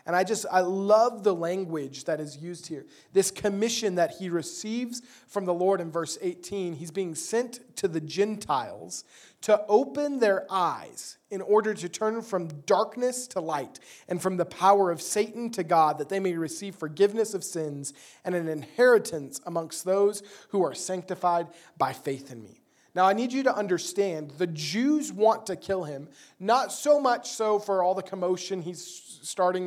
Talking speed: 180 wpm